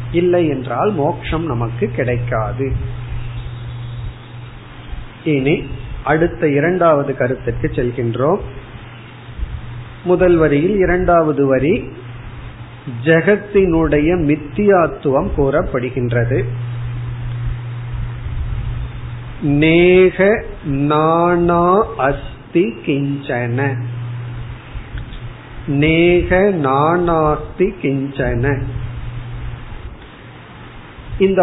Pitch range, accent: 120-160 Hz, native